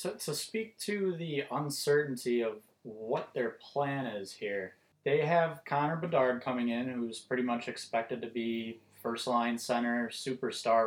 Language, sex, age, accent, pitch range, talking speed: English, male, 20-39, American, 115-145 Hz, 155 wpm